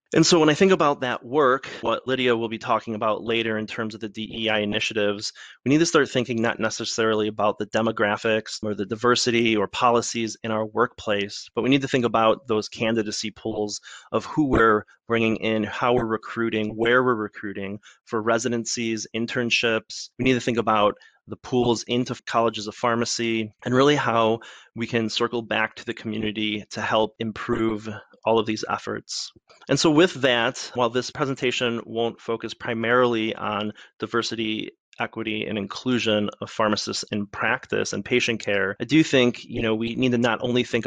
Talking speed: 180 wpm